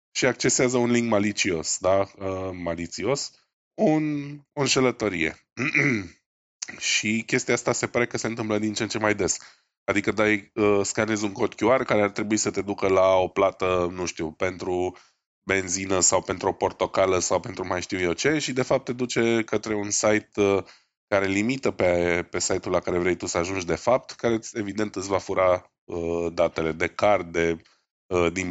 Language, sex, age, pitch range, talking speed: Romanian, male, 20-39, 95-120 Hz, 185 wpm